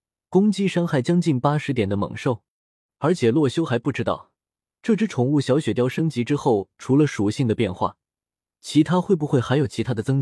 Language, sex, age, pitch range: Chinese, male, 20-39, 115-160 Hz